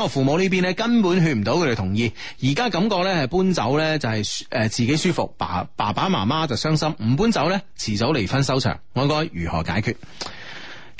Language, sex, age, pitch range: Chinese, male, 30-49, 110-165 Hz